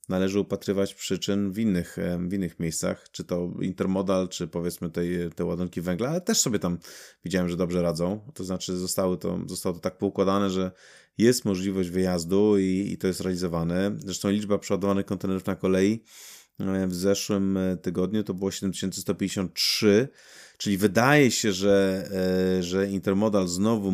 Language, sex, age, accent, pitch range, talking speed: Polish, male, 30-49, native, 90-100 Hz, 145 wpm